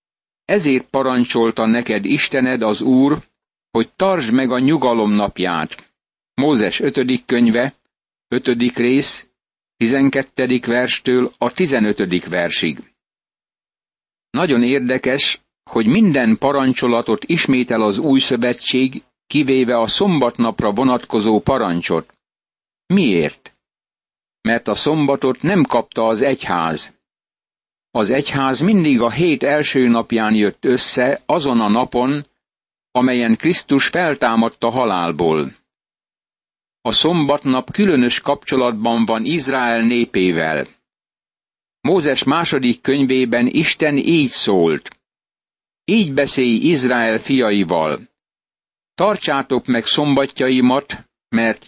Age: 60-79